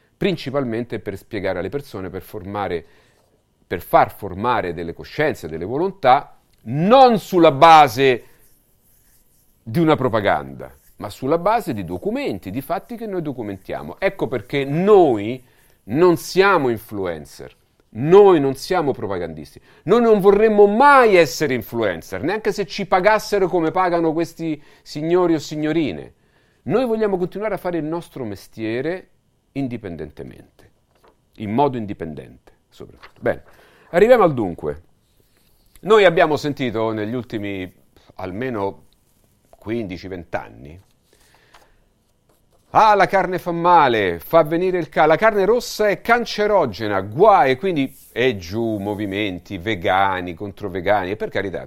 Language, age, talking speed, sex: Italian, 40-59, 120 wpm, male